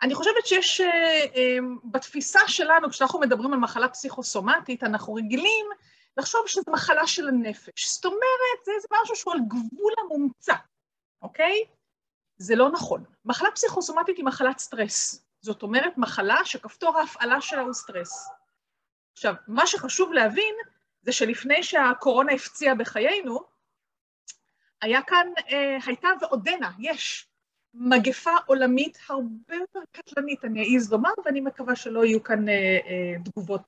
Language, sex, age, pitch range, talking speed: Hebrew, female, 30-49, 230-325 Hz, 130 wpm